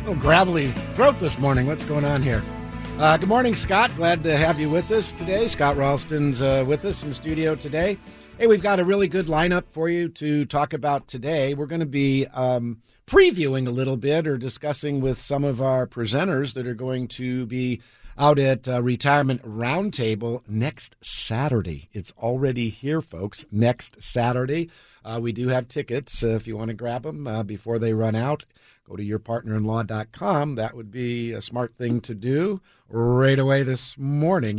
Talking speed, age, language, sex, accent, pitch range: 185 wpm, 50-69, English, male, American, 115-150 Hz